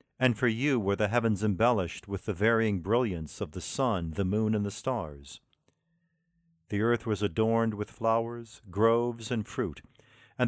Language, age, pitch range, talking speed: English, 50-69, 100-120 Hz, 165 wpm